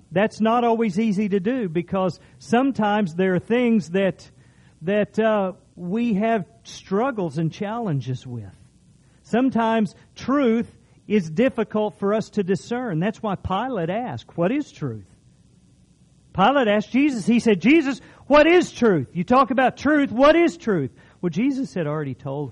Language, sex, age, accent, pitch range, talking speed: English, male, 50-69, American, 140-220 Hz, 150 wpm